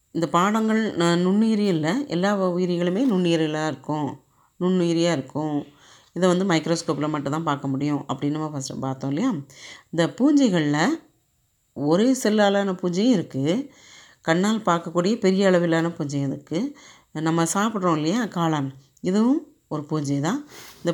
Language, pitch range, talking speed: Tamil, 155-205 Hz, 120 wpm